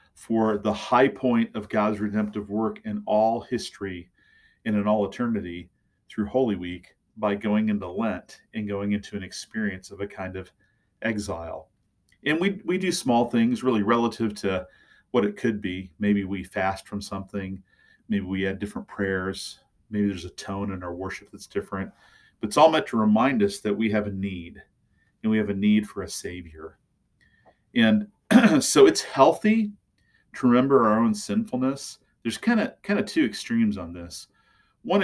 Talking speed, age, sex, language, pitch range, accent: 175 wpm, 40-59, male, English, 95-120 Hz, American